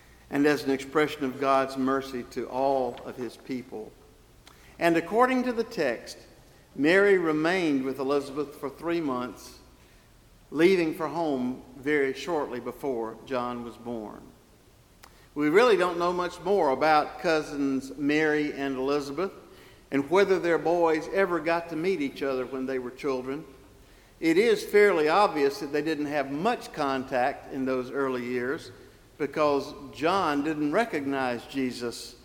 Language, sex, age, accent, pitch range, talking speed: English, male, 50-69, American, 130-170 Hz, 145 wpm